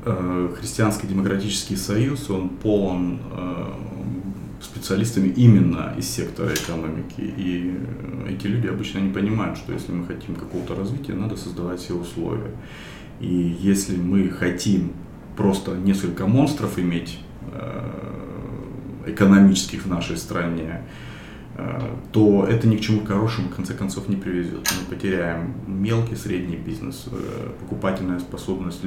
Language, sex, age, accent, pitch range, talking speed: Russian, male, 30-49, native, 90-100 Hz, 115 wpm